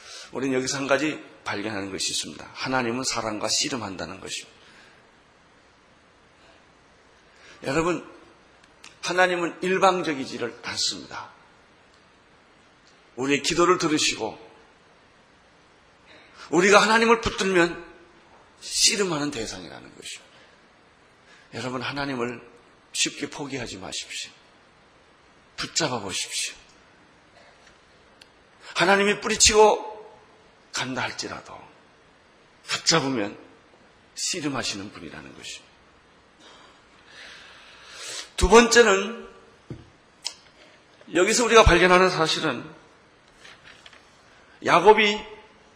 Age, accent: 40-59, native